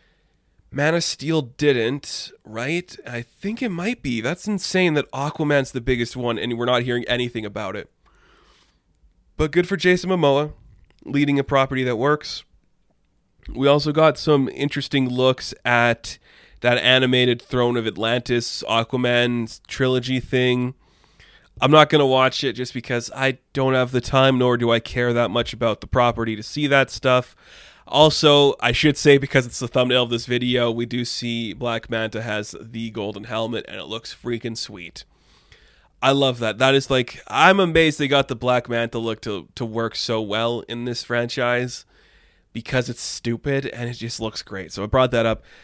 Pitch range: 115-135 Hz